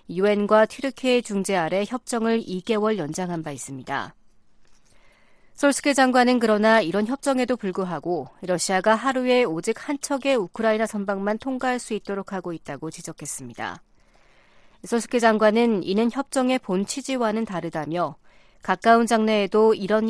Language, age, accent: Korean, 40-59, native